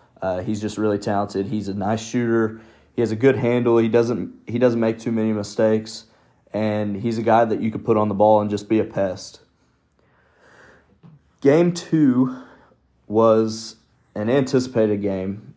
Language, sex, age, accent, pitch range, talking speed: English, male, 20-39, American, 100-110 Hz, 170 wpm